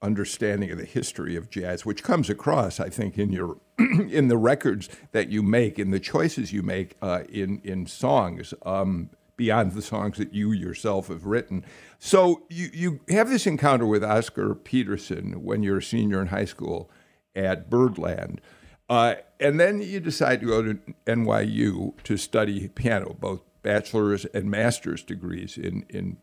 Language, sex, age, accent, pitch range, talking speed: English, male, 60-79, American, 100-130 Hz, 170 wpm